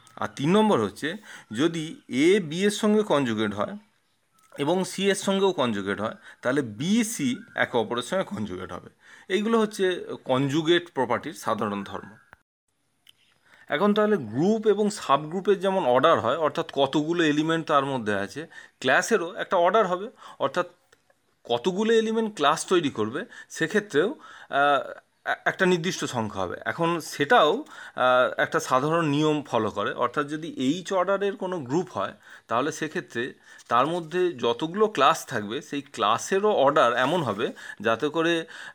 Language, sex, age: Bengali, male, 30-49